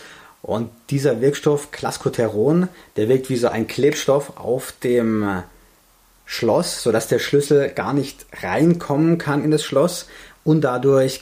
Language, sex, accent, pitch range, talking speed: German, male, German, 110-140 Hz, 135 wpm